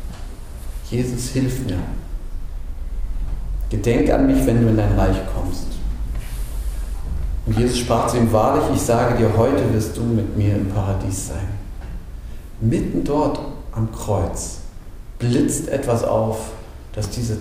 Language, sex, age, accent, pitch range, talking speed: German, male, 40-59, German, 85-125 Hz, 130 wpm